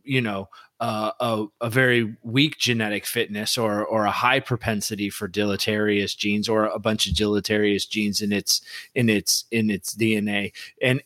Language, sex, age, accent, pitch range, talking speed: English, male, 30-49, American, 110-135 Hz, 170 wpm